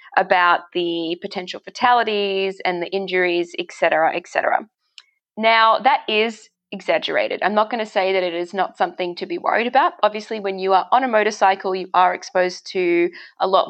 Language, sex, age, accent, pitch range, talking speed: English, female, 20-39, Australian, 185-245 Hz, 185 wpm